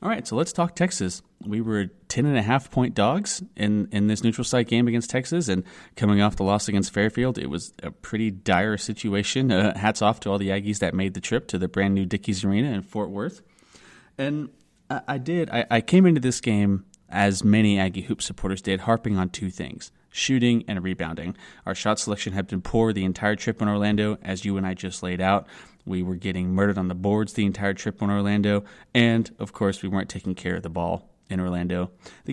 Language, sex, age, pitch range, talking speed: English, male, 30-49, 95-115 Hz, 215 wpm